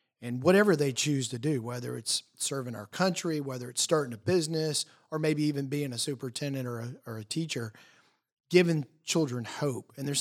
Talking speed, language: 190 wpm, English